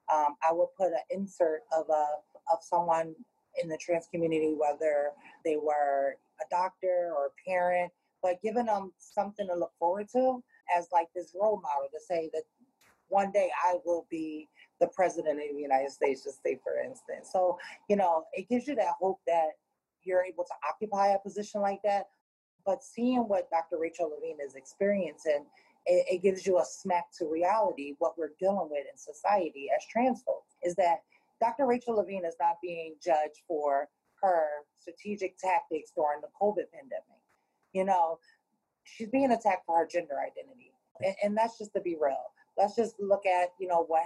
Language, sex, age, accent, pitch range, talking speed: English, female, 30-49, American, 160-200 Hz, 185 wpm